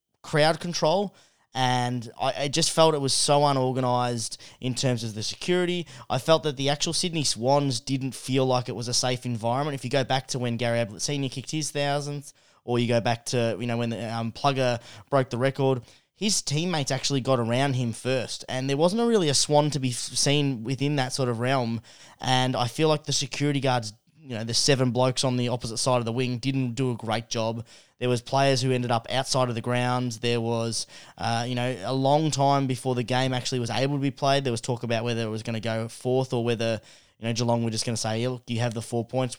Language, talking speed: English, 235 wpm